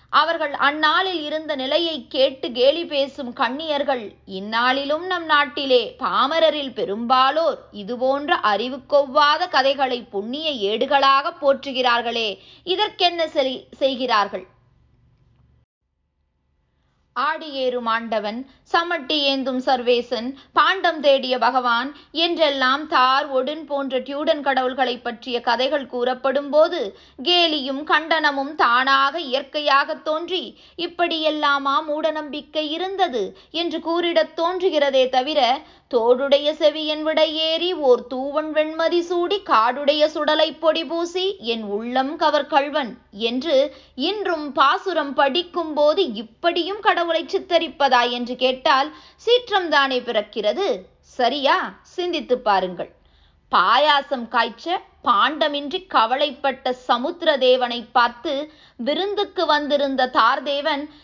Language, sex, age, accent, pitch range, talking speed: Tamil, female, 20-39, native, 255-320 Hz, 90 wpm